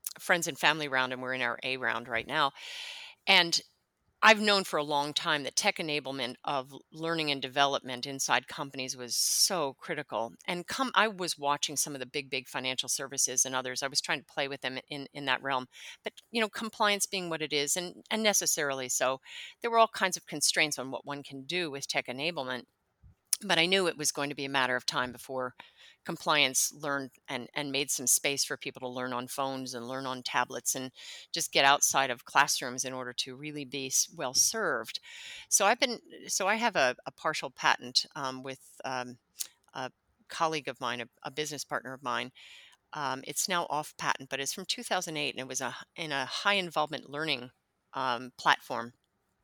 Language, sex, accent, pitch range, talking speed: English, female, American, 130-165 Hz, 205 wpm